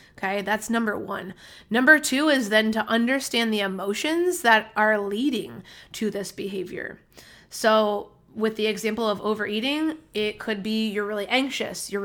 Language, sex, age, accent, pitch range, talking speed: English, female, 20-39, American, 200-225 Hz, 155 wpm